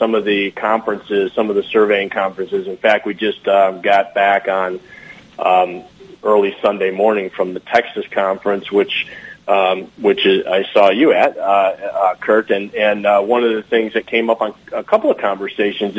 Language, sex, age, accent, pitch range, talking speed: English, male, 40-59, American, 105-120 Hz, 190 wpm